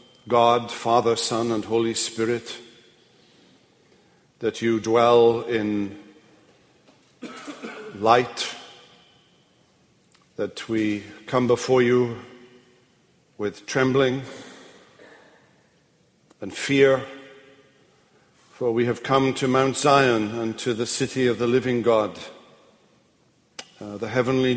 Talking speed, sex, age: 95 wpm, male, 50-69